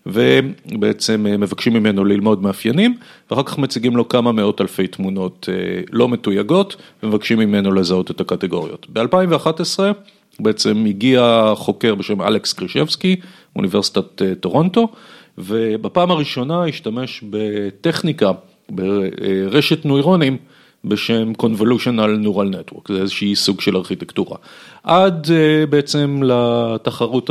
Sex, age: male, 40-59